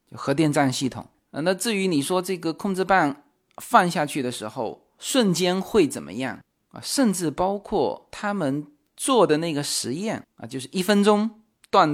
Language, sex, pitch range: Chinese, male, 130-195 Hz